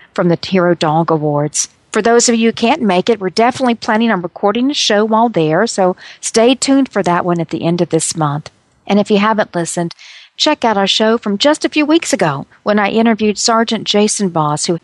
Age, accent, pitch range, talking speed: 50-69, American, 180-250 Hz, 225 wpm